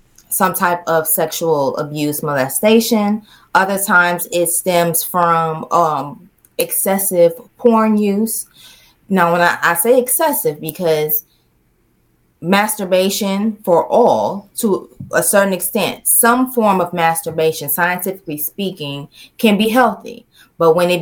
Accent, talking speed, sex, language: American, 115 wpm, female, English